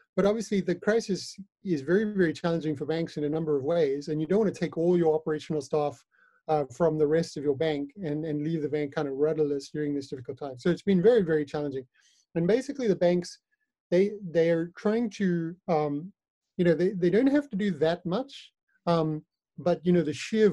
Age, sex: 30-49, male